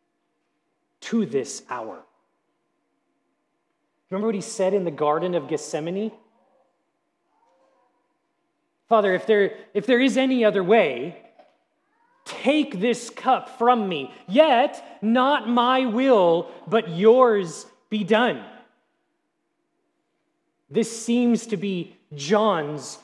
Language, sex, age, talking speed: English, male, 30-49, 100 wpm